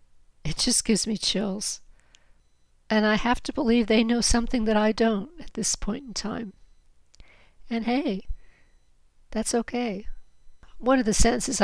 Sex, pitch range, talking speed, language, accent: female, 180-215 Hz, 150 wpm, English, American